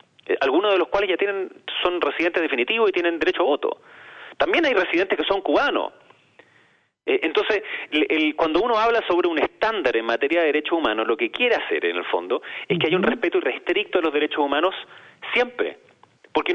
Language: Spanish